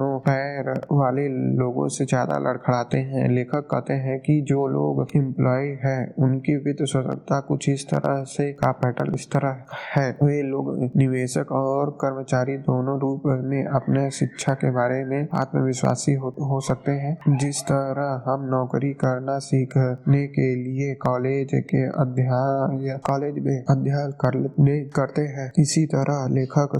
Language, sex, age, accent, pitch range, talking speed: Hindi, male, 20-39, native, 135-145 Hz, 145 wpm